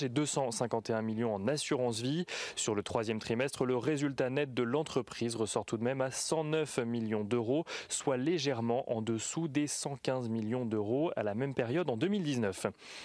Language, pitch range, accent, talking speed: French, 120-155 Hz, French, 170 wpm